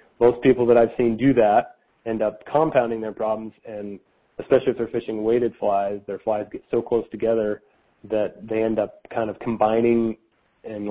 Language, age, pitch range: English, 30-49, 110-125 Hz